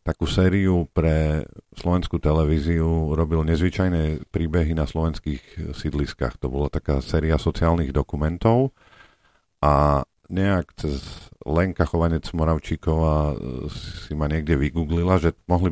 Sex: male